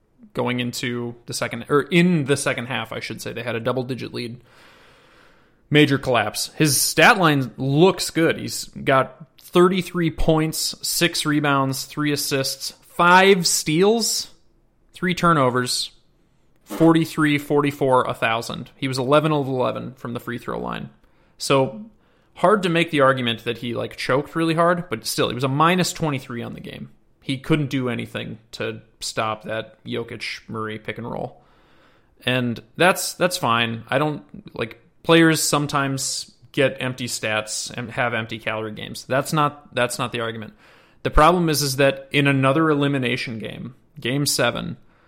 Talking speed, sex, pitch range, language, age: 155 wpm, male, 120-155 Hz, English, 30-49